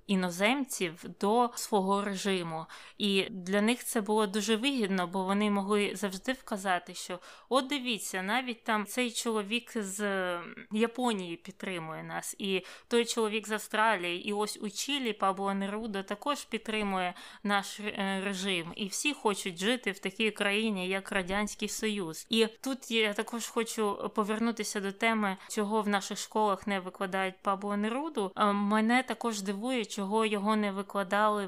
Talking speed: 145 wpm